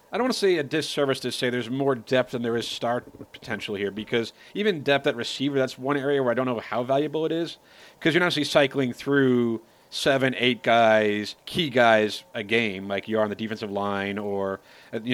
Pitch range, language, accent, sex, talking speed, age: 115-145 Hz, English, American, male, 220 wpm, 40-59